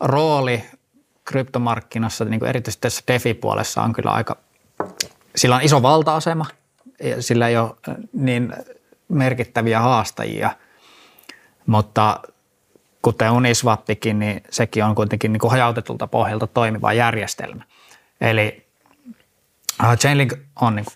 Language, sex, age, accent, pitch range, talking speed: Finnish, male, 20-39, native, 110-130 Hz, 105 wpm